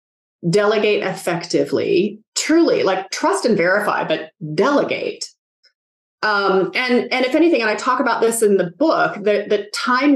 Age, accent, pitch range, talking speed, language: 30-49, American, 170-230 Hz, 150 wpm, English